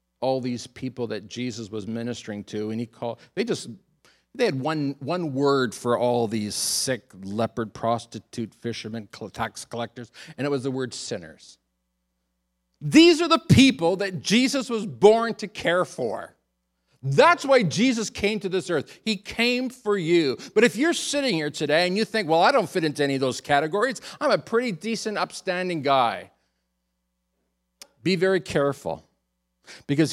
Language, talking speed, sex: English, 165 wpm, male